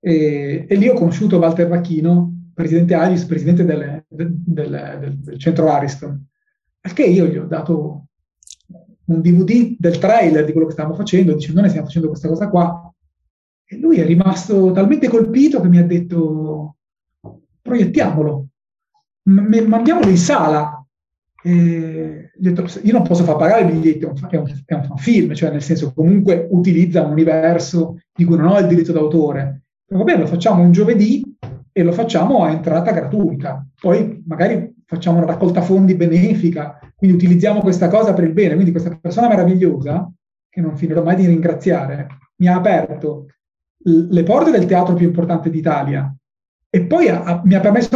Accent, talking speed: native, 165 wpm